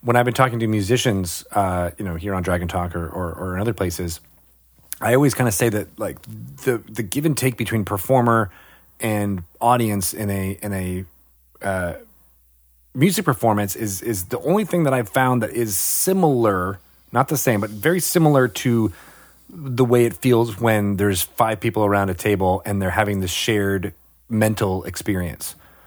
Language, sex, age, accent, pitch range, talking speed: English, male, 30-49, American, 100-125 Hz, 180 wpm